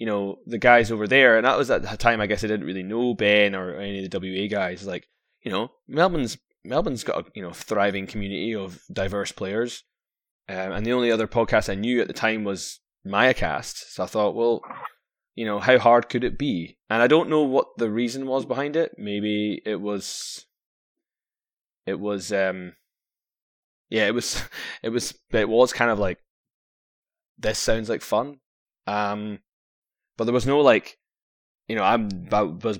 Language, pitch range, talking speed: English, 95-115 Hz, 195 wpm